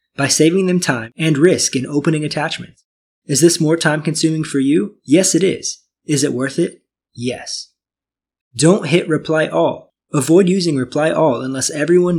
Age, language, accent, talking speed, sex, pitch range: 20-39, English, American, 160 wpm, male, 135-165 Hz